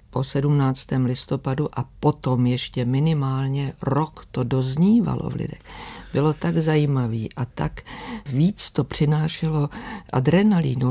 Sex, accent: female, native